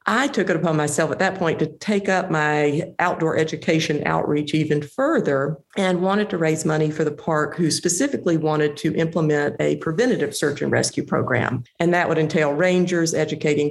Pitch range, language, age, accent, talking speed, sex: 150-175 Hz, English, 50-69, American, 185 wpm, female